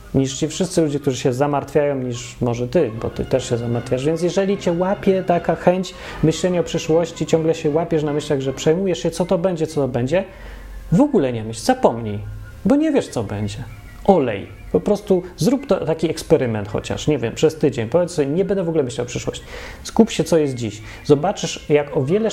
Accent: native